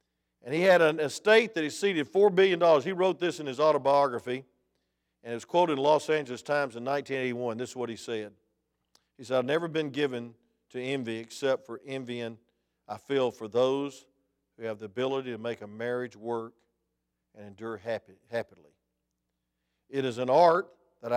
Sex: male